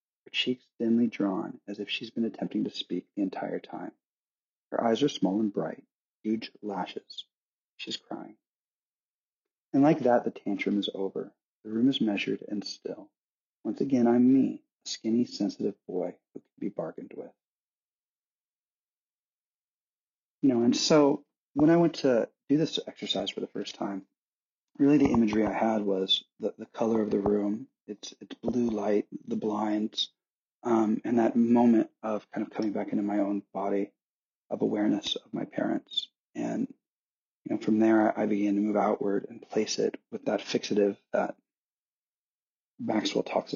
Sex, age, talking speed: male, 40-59, 160 wpm